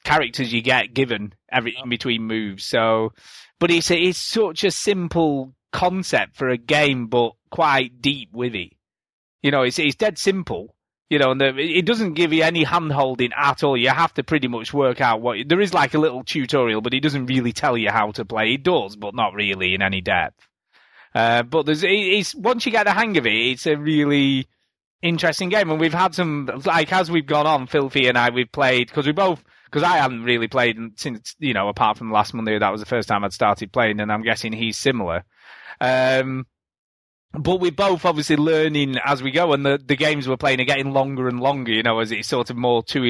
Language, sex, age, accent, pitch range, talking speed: English, male, 30-49, British, 115-155 Hz, 225 wpm